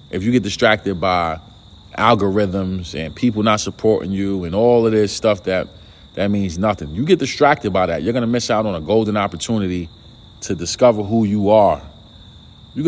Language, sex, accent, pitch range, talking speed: English, male, American, 100-130 Hz, 185 wpm